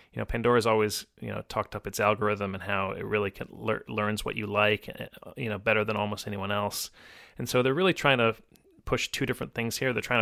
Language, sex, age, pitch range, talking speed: English, male, 30-49, 105-115 Hz, 235 wpm